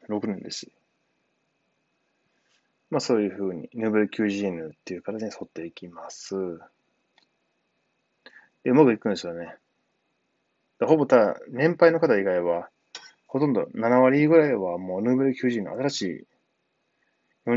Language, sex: Japanese, male